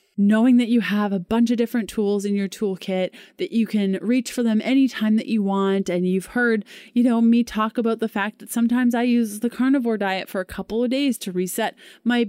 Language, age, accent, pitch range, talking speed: English, 20-39, American, 195-240 Hz, 230 wpm